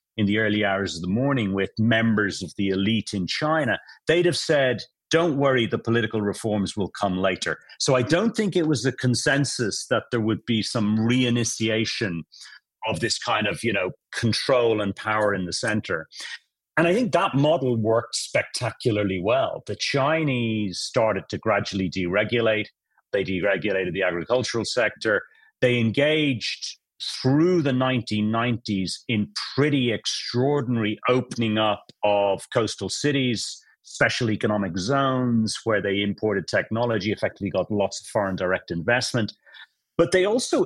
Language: English